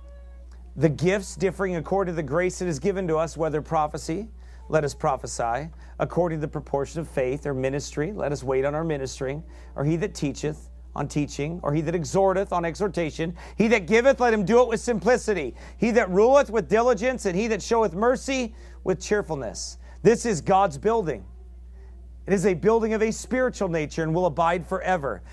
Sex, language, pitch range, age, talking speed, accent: male, English, 110-170 Hz, 40-59, 190 wpm, American